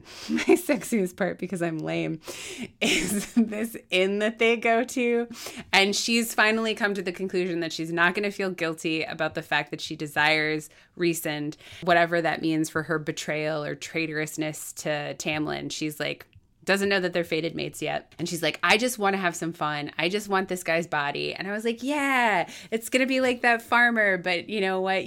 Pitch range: 160-210 Hz